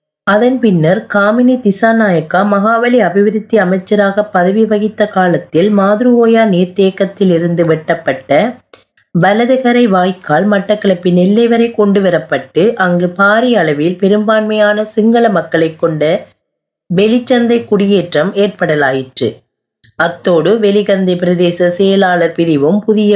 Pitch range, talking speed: 170-215 Hz, 95 wpm